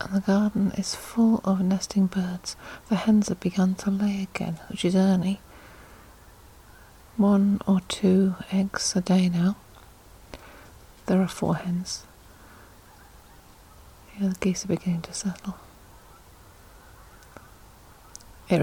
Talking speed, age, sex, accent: 115 wpm, 40-59, female, British